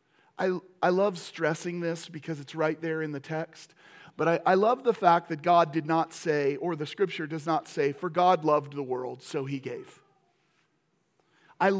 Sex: male